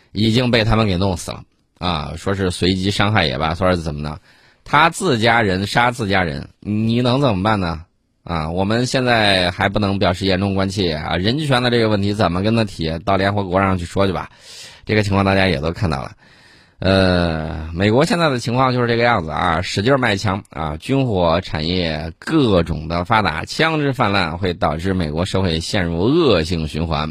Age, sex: 20-39, male